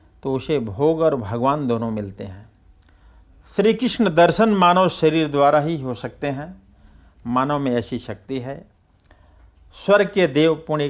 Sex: male